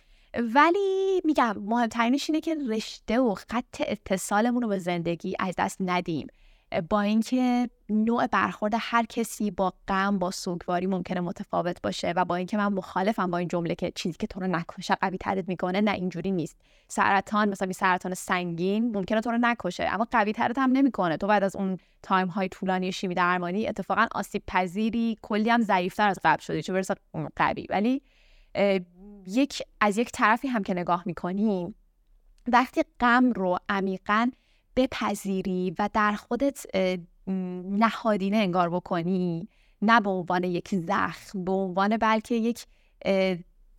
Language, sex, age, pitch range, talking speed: Persian, female, 20-39, 185-230 Hz, 145 wpm